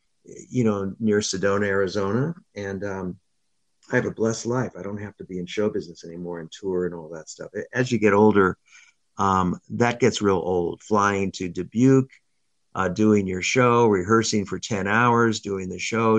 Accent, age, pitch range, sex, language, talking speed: American, 50-69, 95-110 Hz, male, English, 185 wpm